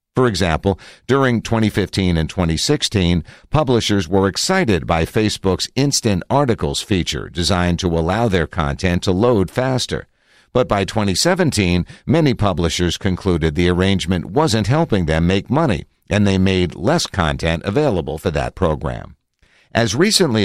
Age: 60-79